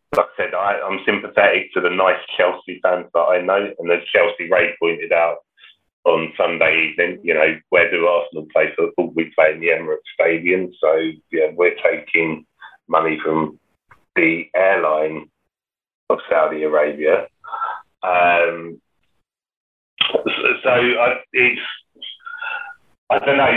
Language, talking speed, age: English, 145 wpm, 30-49